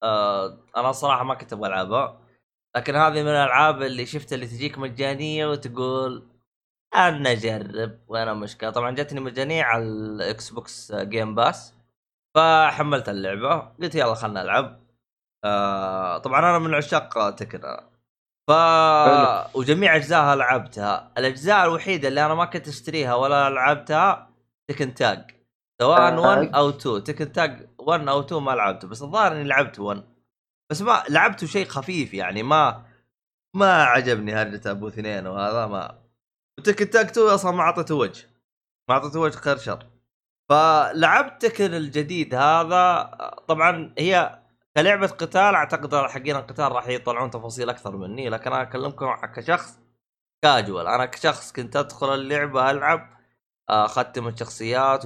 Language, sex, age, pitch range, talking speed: Arabic, male, 20-39, 120-155 Hz, 135 wpm